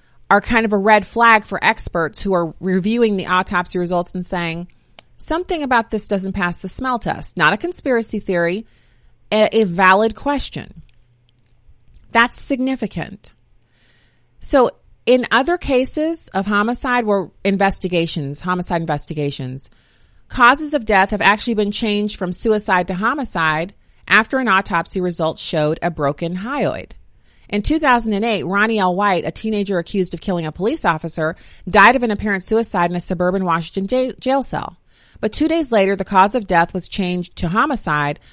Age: 30-49